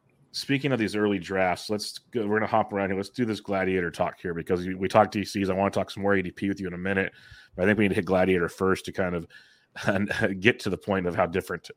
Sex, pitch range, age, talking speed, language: male, 95-110 Hz, 30-49, 270 wpm, English